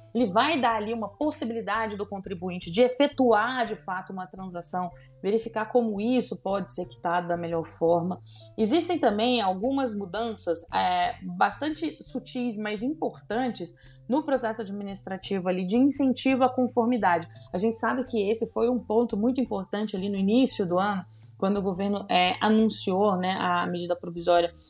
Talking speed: 155 wpm